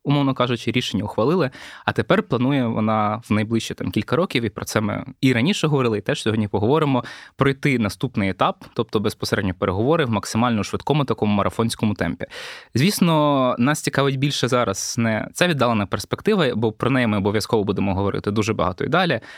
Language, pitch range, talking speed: Ukrainian, 105-135 Hz, 175 wpm